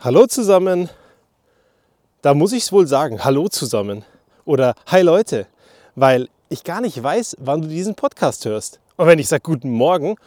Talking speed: 170 wpm